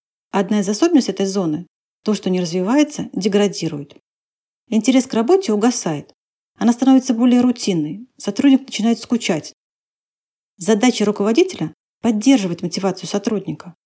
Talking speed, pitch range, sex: 115 wpm, 185-240 Hz, female